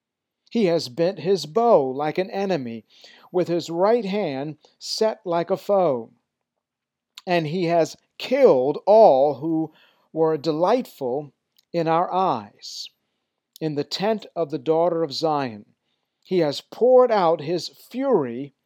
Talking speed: 130 wpm